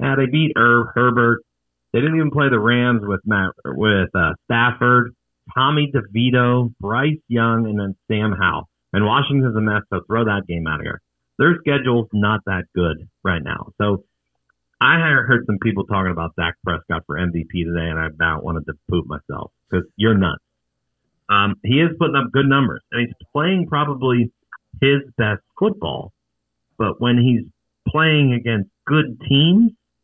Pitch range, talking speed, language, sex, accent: 90-125 Hz, 170 wpm, English, male, American